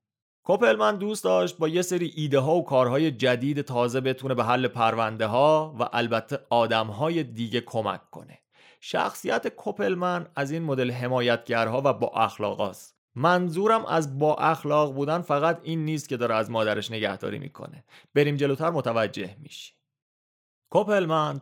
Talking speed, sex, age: 145 wpm, male, 30-49